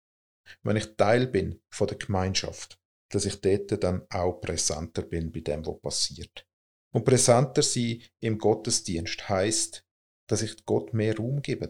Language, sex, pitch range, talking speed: German, male, 95-120 Hz, 155 wpm